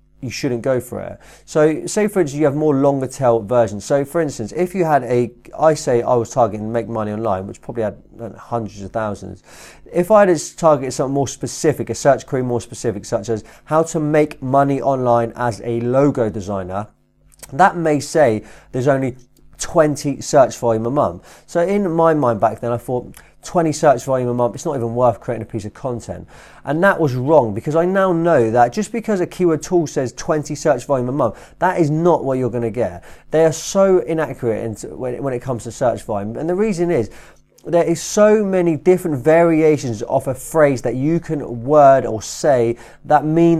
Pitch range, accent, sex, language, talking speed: 120-160 Hz, British, male, English, 205 wpm